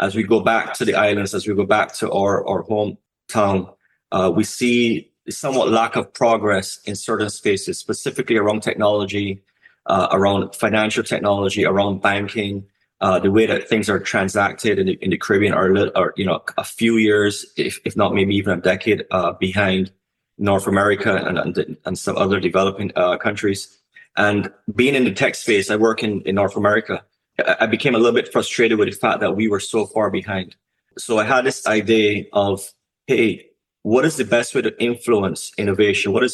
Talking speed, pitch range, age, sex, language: 195 wpm, 95-110 Hz, 20-39, male, English